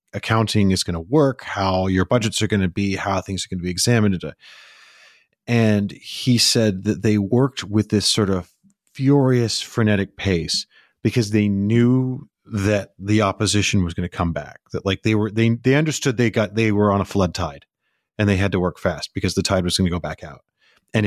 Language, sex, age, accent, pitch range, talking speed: English, male, 30-49, American, 90-110 Hz, 210 wpm